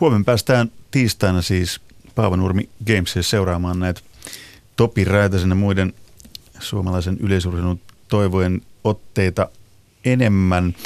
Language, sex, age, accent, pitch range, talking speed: Finnish, male, 30-49, native, 90-110 Hz, 95 wpm